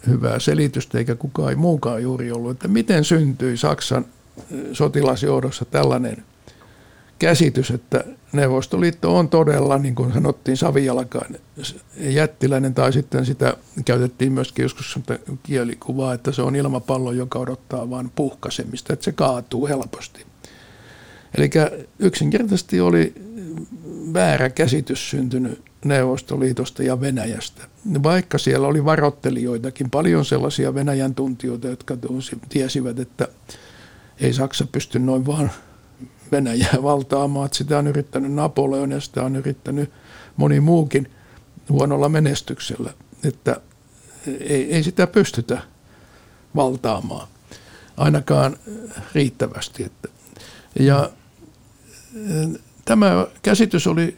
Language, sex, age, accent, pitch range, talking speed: Finnish, male, 60-79, native, 125-150 Hz, 105 wpm